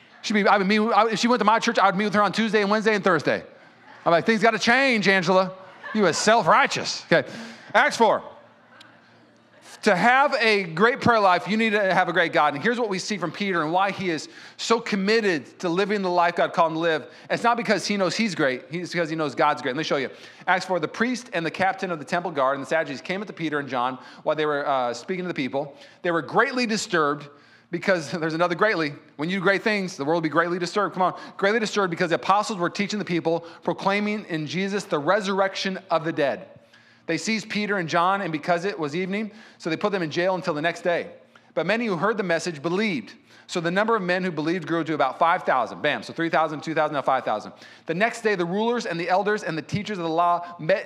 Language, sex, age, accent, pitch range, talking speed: English, male, 30-49, American, 165-210 Hz, 250 wpm